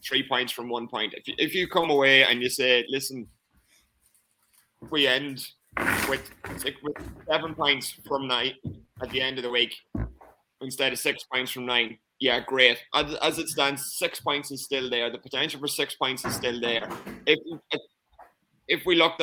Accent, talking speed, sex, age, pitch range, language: British, 185 wpm, male, 20-39, 130-150 Hz, English